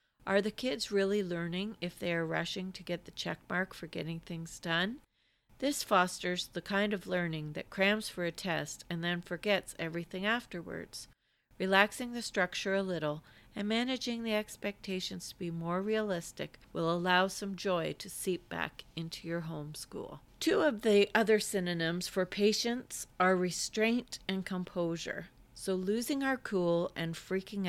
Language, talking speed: English, 160 wpm